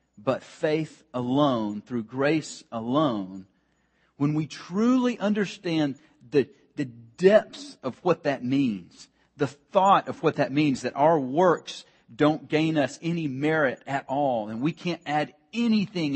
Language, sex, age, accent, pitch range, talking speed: English, male, 40-59, American, 130-185 Hz, 140 wpm